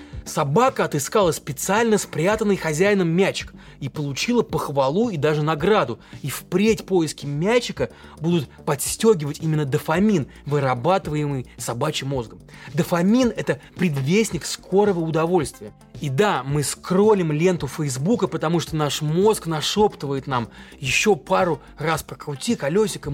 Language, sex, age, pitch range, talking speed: Russian, male, 20-39, 145-200 Hz, 115 wpm